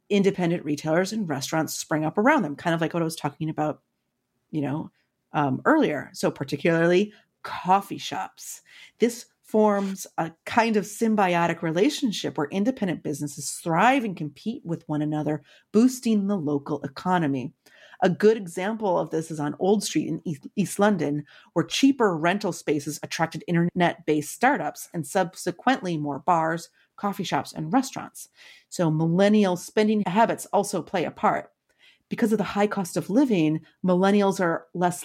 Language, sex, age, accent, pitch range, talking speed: English, female, 30-49, American, 155-205 Hz, 155 wpm